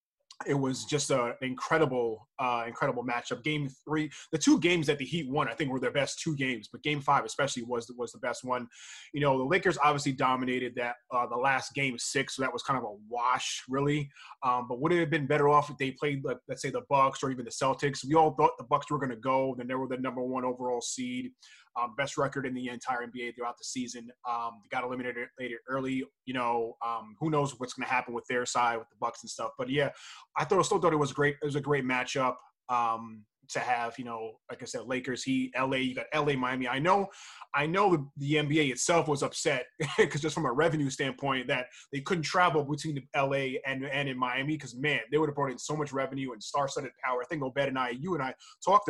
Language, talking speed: English, 245 wpm